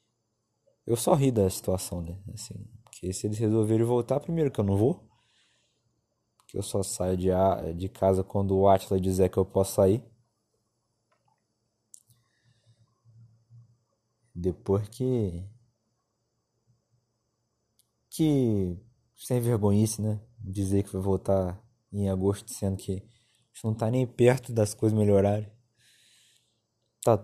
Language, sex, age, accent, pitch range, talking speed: Portuguese, male, 20-39, Brazilian, 100-115 Hz, 115 wpm